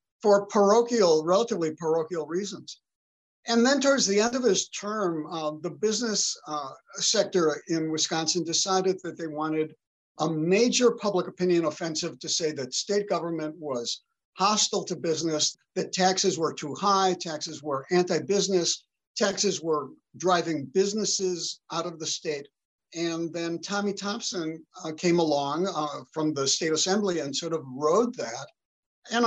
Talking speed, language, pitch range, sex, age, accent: 150 wpm, English, 155-195 Hz, male, 60-79, American